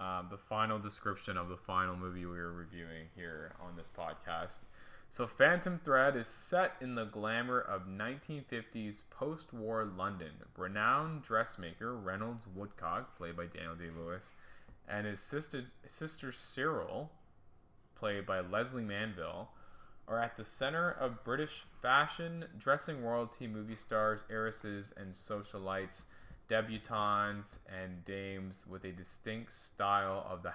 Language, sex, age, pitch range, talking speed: English, male, 20-39, 95-120 Hz, 130 wpm